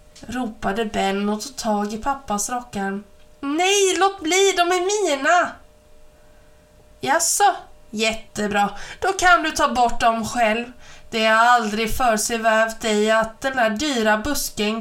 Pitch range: 200-280 Hz